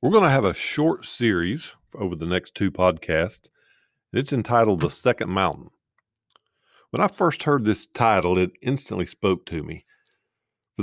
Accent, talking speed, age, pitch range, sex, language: American, 160 wpm, 50-69, 85-110 Hz, male, English